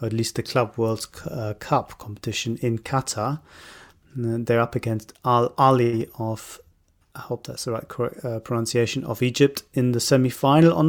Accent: British